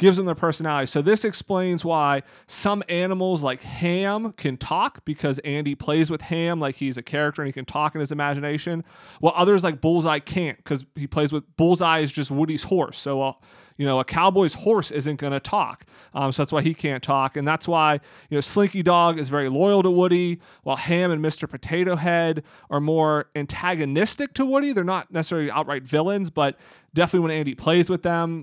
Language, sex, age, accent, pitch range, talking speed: English, male, 30-49, American, 145-175 Hz, 205 wpm